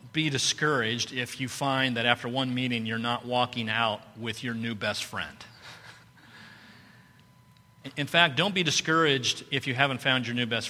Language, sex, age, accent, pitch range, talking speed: English, male, 40-59, American, 110-135 Hz, 170 wpm